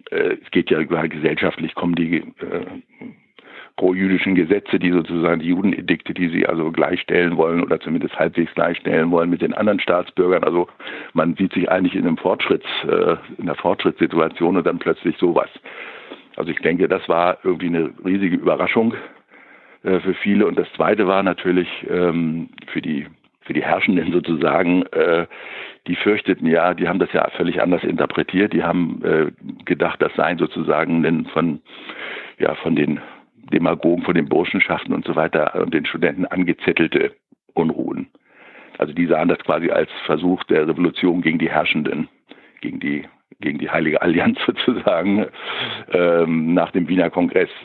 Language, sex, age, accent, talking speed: German, male, 60-79, German, 160 wpm